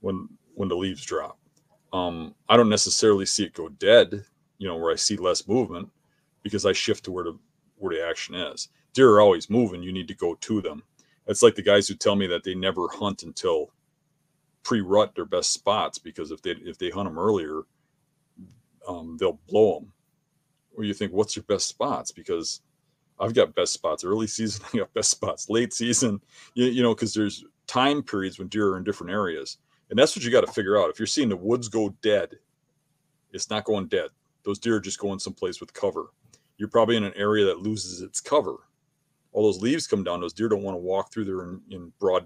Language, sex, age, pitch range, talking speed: English, male, 40-59, 100-160 Hz, 215 wpm